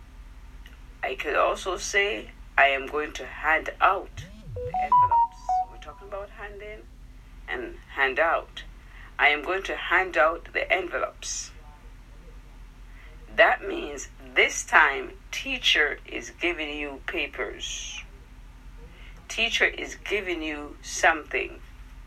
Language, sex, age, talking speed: English, female, 50-69, 110 wpm